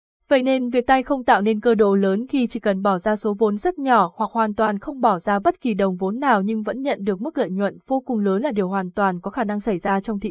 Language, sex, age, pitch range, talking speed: Vietnamese, female, 20-39, 195-240 Hz, 295 wpm